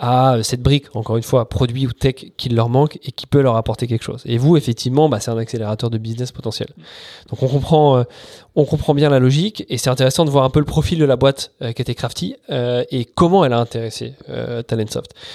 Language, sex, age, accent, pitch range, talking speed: English, male, 20-39, French, 115-145 Hz, 240 wpm